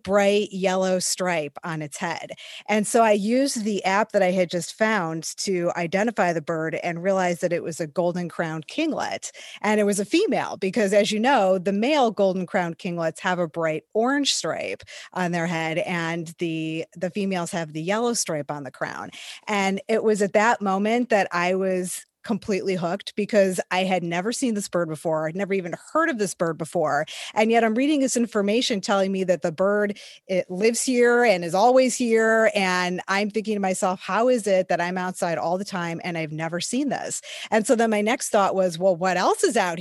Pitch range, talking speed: 180-230 Hz, 210 wpm